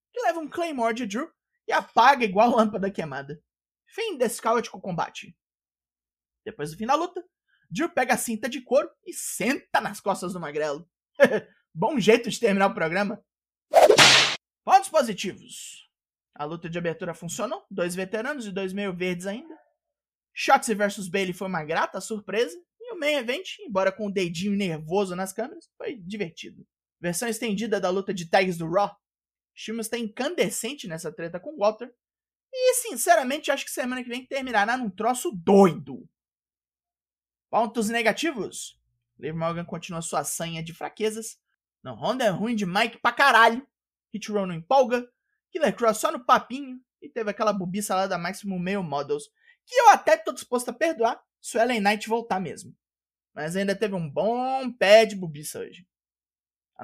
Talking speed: 165 wpm